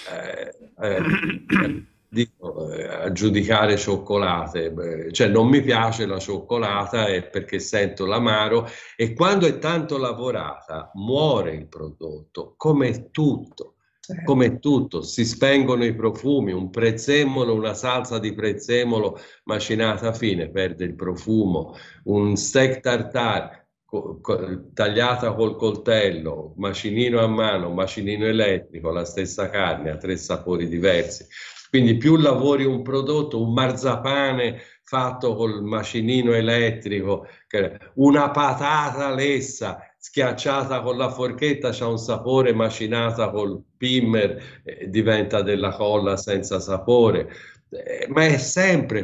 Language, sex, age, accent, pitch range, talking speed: Italian, male, 50-69, native, 100-130 Hz, 115 wpm